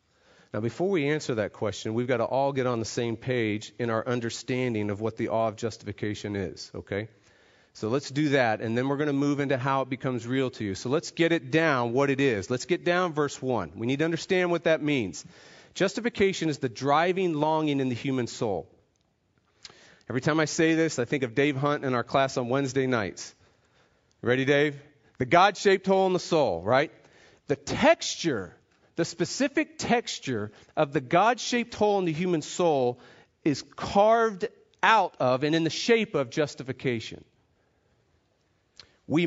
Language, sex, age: English, male, 40-59